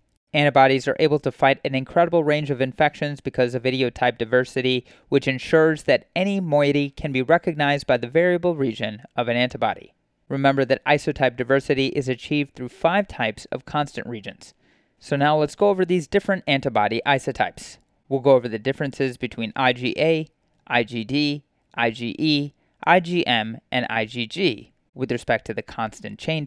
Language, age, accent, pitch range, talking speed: English, 30-49, American, 125-150 Hz, 155 wpm